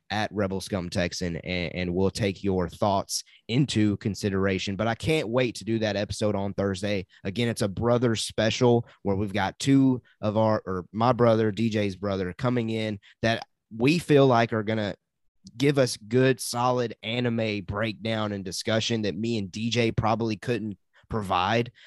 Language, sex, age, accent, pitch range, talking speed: English, male, 20-39, American, 100-125 Hz, 165 wpm